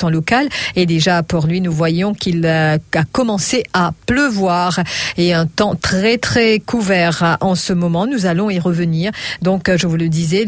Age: 50-69